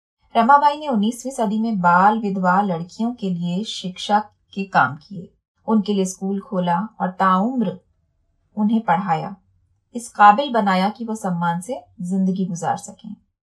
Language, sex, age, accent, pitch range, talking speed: Hindi, female, 20-39, native, 180-230 Hz, 145 wpm